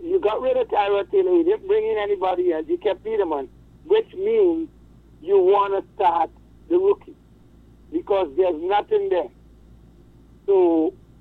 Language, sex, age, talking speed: English, male, 60-79, 160 wpm